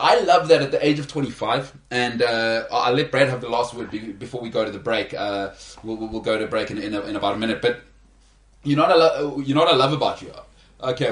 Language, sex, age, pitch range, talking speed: English, male, 20-39, 115-150 Hz, 250 wpm